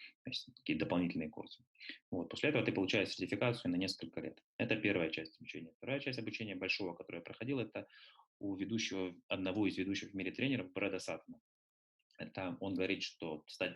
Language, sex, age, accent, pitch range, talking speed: Russian, male, 20-39, native, 85-105 Hz, 175 wpm